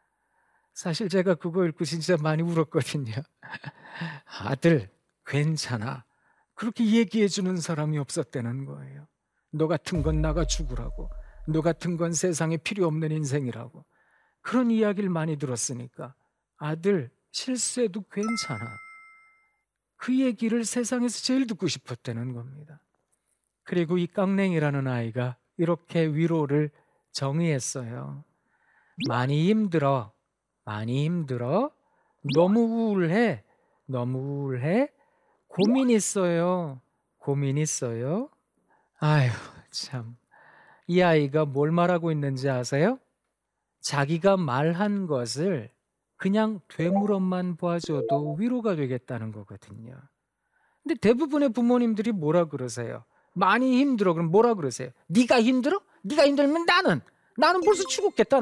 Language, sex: Korean, male